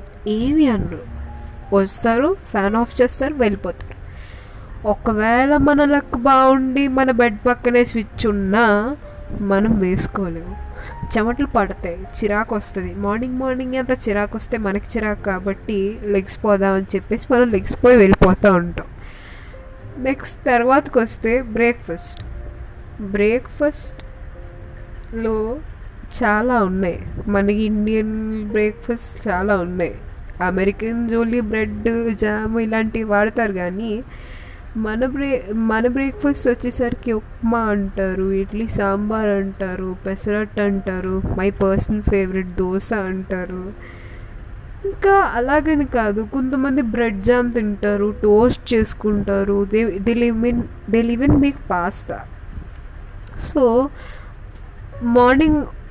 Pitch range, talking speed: 195-240 Hz, 95 wpm